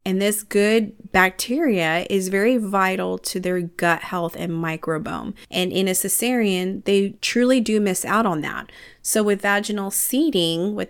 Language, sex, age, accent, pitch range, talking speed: English, female, 30-49, American, 170-215 Hz, 160 wpm